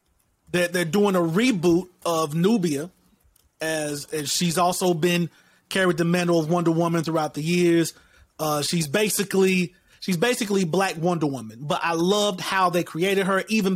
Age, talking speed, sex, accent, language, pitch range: 30-49, 155 wpm, male, American, English, 170-200 Hz